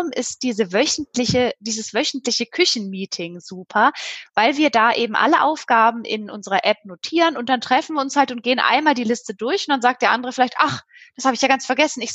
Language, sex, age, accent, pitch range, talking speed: German, female, 20-39, German, 215-260 Hz, 215 wpm